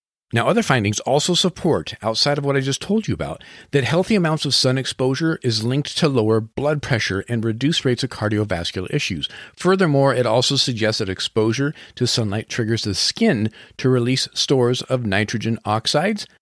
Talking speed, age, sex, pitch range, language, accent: 175 wpm, 40-59, male, 105-145 Hz, English, American